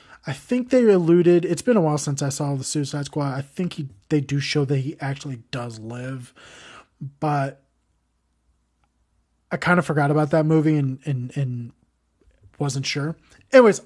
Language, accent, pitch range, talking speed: English, American, 140-175 Hz, 170 wpm